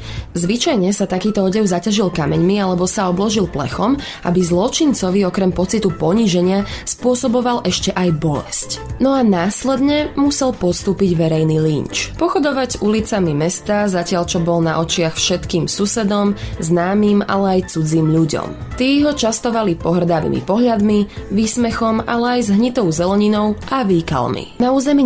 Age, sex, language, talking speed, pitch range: 20-39, female, Slovak, 135 wpm, 180-240 Hz